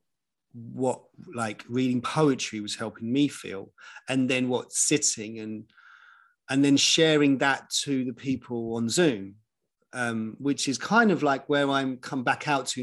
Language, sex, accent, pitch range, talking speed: English, male, British, 110-140 Hz, 160 wpm